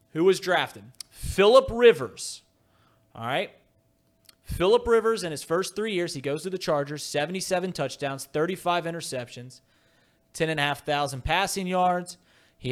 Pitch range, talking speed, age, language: 125-160 Hz, 130 wpm, 30-49, English